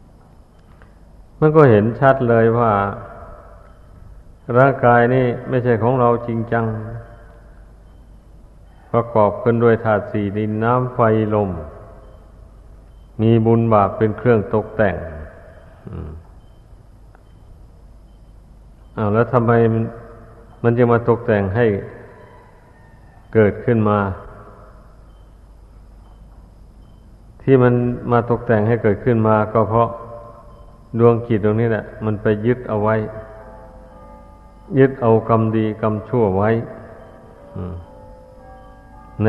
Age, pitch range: 60-79, 100-115 Hz